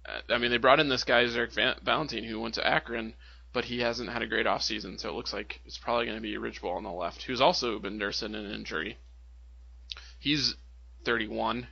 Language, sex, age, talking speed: English, male, 20-39, 215 wpm